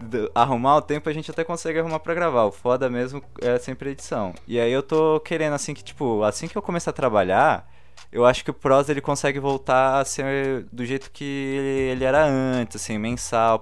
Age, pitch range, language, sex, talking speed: 20-39, 105-150 Hz, Portuguese, male, 205 wpm